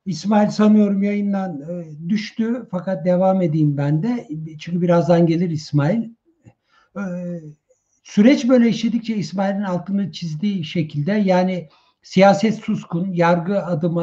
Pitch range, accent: 175-230 Hz, native